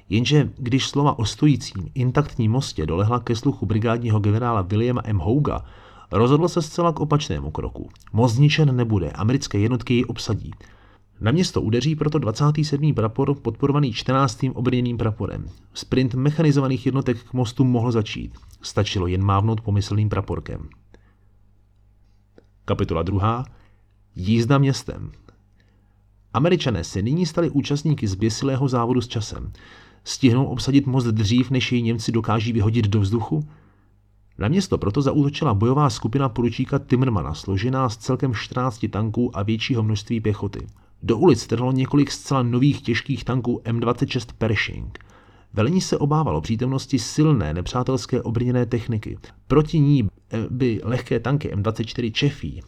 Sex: male